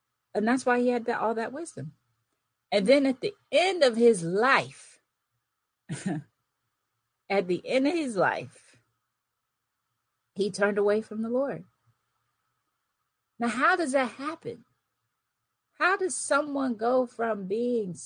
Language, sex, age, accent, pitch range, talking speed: English, female, 40-59, American, 185-255 Hz, 130 wpm